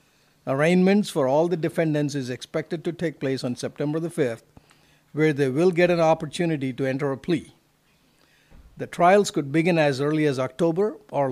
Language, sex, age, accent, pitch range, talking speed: English, male, 50-69, Indian, 140-170 Hz, 175 wpm